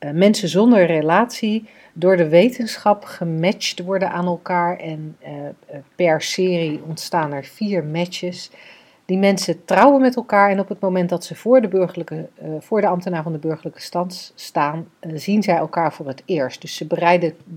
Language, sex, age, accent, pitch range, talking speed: Dutch, female, 40-59, Dutch, 155-195 Hz, 170 wpm